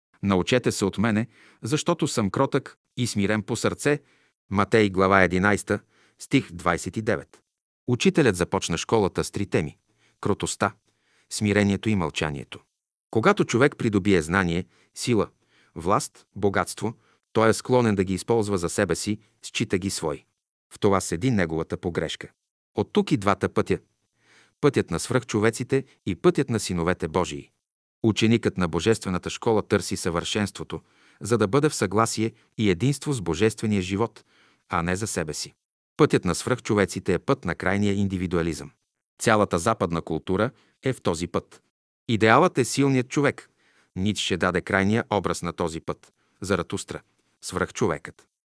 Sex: male